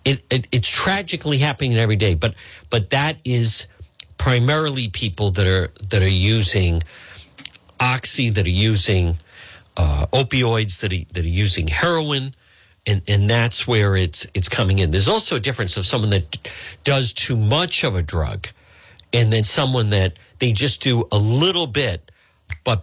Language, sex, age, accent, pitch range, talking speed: English, male, 50-69, American, 95-125 Hz, 165 wpm